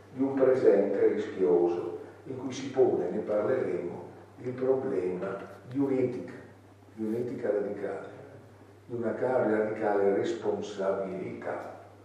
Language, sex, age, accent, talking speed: Italian, male, 50-69, native, 105 wpm